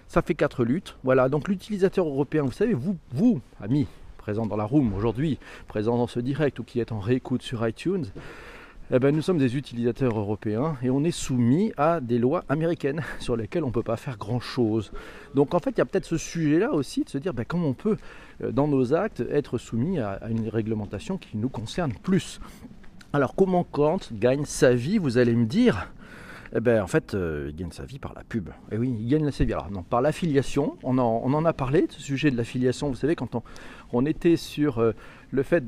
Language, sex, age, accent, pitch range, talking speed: French, male, 40-59, French, 120-170 Hz, 225 wpm